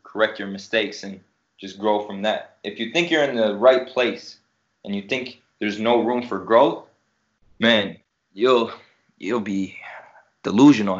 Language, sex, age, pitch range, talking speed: English, male, 20-39, 105-115 Hz, 160 wpm